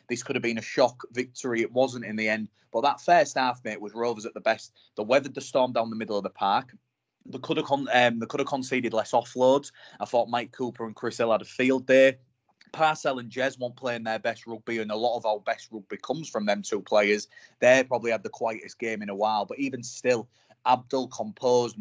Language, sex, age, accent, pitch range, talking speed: English, male, 20-39, British, 110-130 Hz, 245 wpm